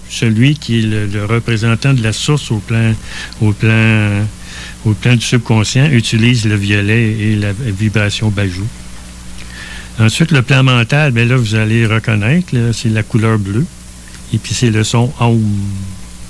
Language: French